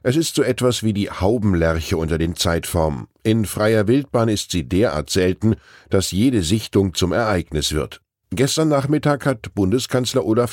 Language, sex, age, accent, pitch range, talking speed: German, male, 10-29, German, 85-115 Hz, 160 wpm